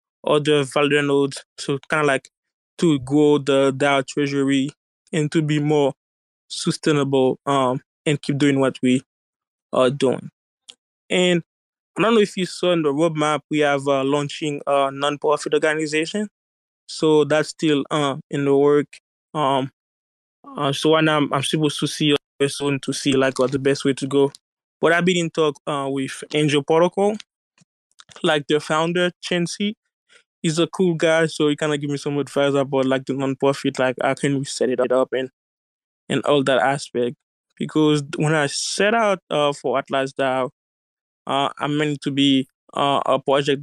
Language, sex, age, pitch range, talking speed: English, male, 20-39, 135-155 Hz, 175 wpm